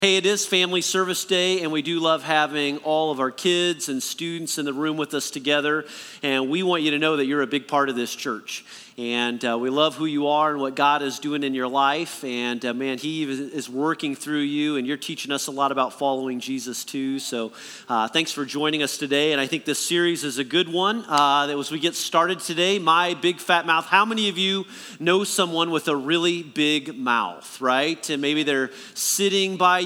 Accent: American